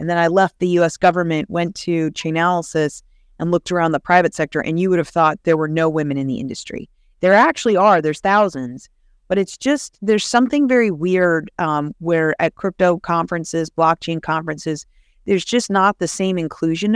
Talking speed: 190 wpm